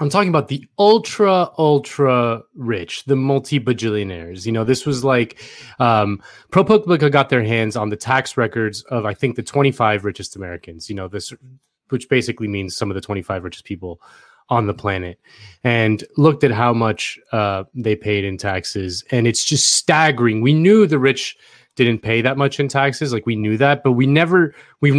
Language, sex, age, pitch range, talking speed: English, male, 30-49, 115-145 Hz, 185 wpm